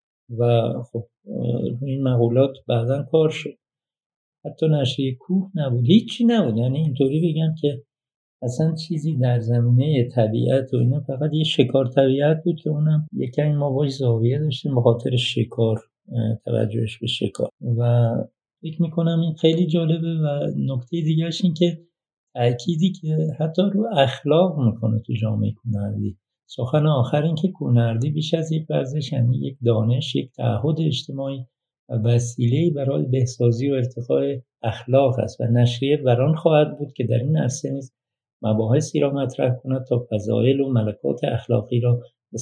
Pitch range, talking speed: 120-155 Hz, 150 wpm